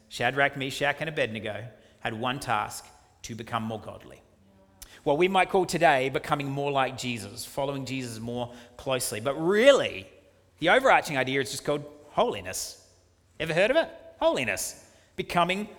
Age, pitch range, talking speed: 30-49, 120-185 Hz, 150 wpm